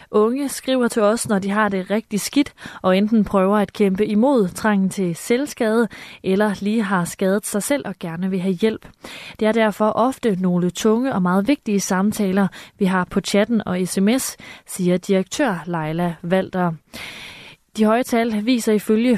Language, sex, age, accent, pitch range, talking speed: Danish, female, 20-39, native, 185-230 Hz, 170 wpm